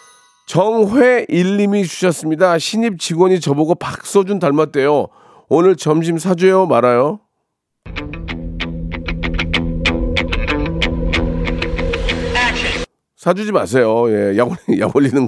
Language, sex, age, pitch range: Korean, male, 40-59, 125-200 Hz